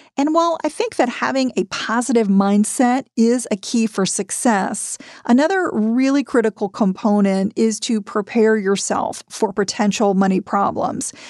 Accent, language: American, English